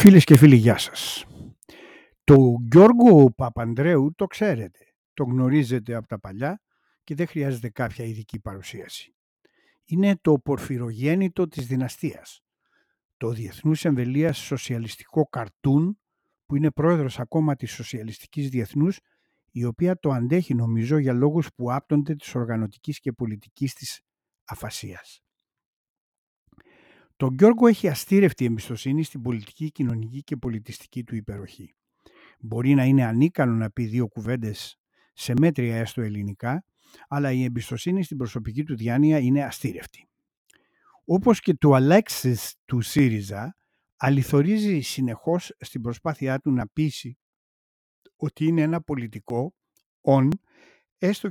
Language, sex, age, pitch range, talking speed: Greek, male, 50-69, 120-155 Hz, 125 wpm